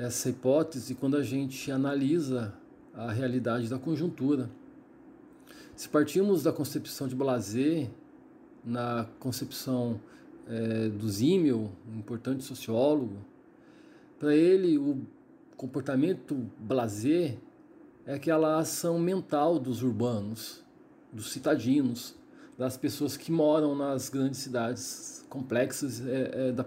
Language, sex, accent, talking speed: Portuguese, male, Brazilian, 110 wpm